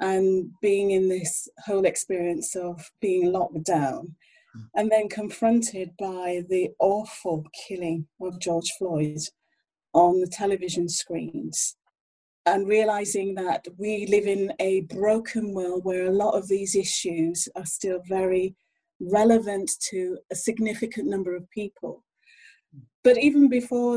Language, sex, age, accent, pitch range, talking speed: English, female, 30-49, British, 180-215 Hz, 130 wpm